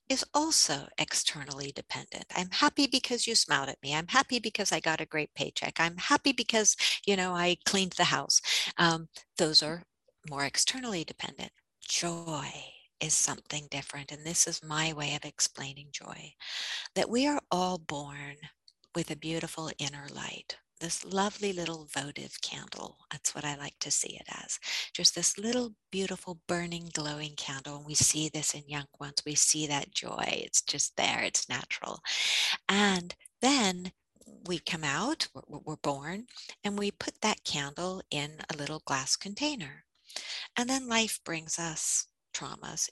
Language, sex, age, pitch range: English, female, 50-69, 150-205 Hz